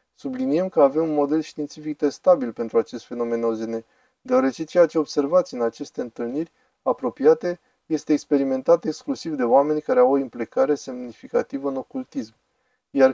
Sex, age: male, 20-39